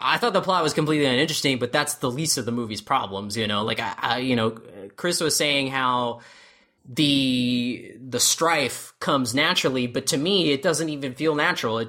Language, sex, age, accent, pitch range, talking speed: English, male, 20-39, American, 125-165 Hz, 200 wpm